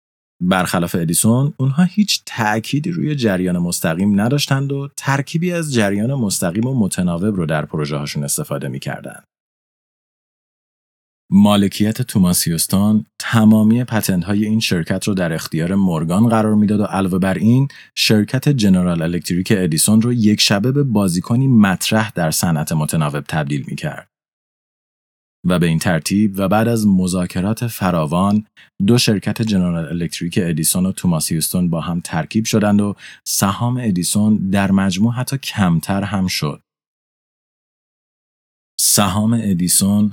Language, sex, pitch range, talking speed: Persian, male, 90-115 Hz, 125 wpm